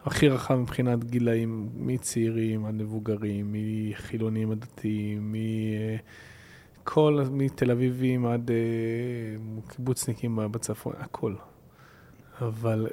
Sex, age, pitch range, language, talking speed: male, 20-39, 110-130 Hz, Hebrew, 75 wpm